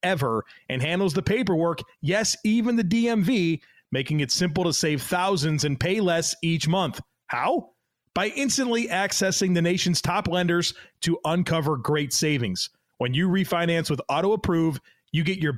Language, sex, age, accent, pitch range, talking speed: English, male, 30-49, American, 150-190 Hz, 160 wpm